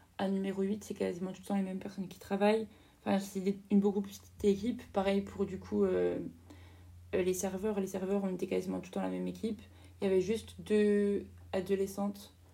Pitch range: 185-210 Hz